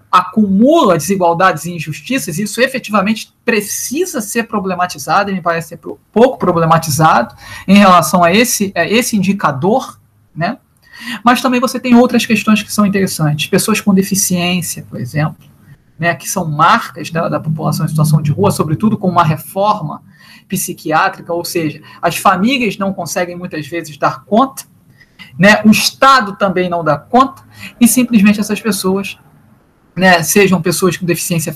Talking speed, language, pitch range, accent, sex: 150 wpm, Portuguese, 170-215 Hz, Brazilian, male